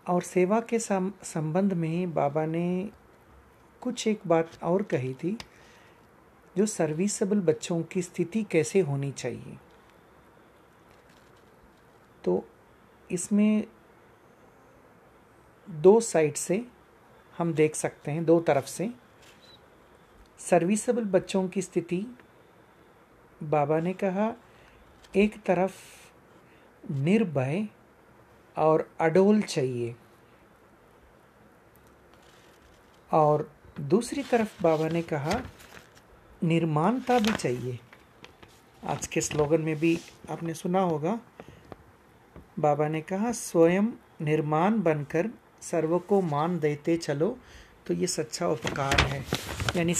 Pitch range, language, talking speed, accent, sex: 155-195 Hz, Hindi, 95 wpm, native, male